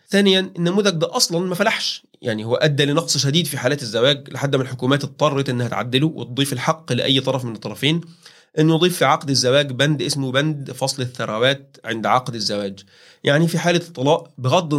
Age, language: 30-49, Arabic